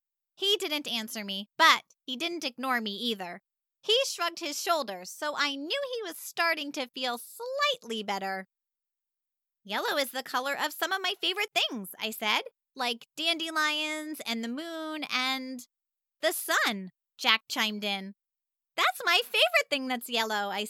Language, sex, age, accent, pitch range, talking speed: English, female, 20-39, American, 235-340 Hz, 155 wpm